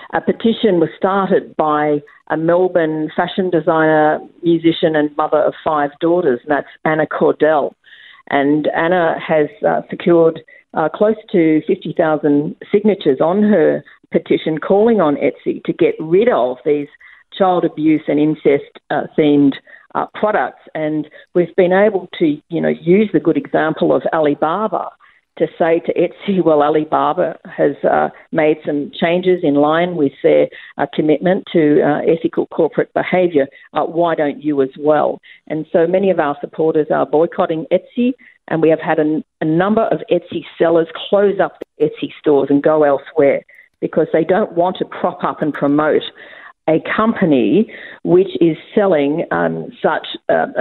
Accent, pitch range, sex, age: Australian, 150-180 Hz, female, 50-69